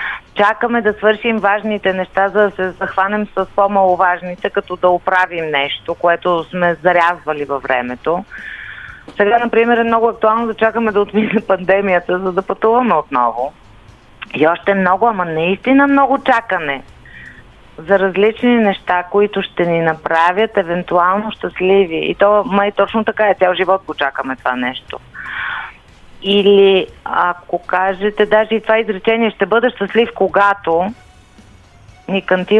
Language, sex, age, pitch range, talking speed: Bulgarian, female, 30-49, 175-215 Hz, 140 wpm